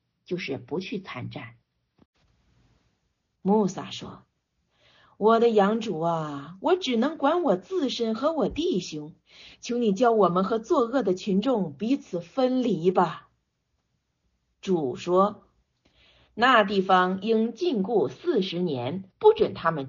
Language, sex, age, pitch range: Chinese, female, 50-69, 180-255 Hz